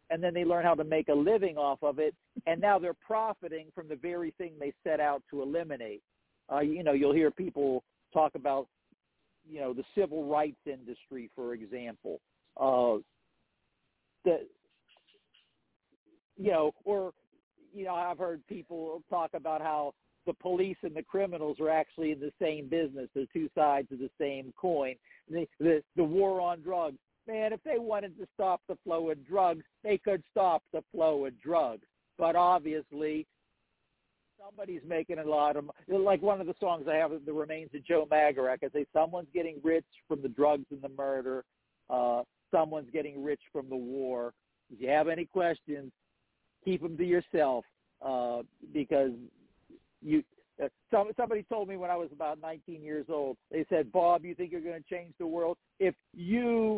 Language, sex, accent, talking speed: English, male, American, 180 wpm